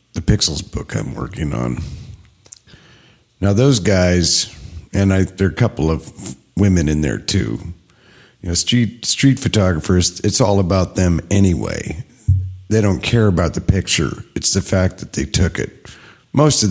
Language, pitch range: English, 85-110 Hz